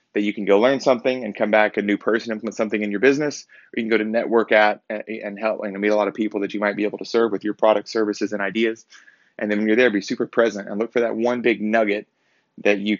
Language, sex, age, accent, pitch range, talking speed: English, male, 20-39, American, 100-115 Hz, 290 wpm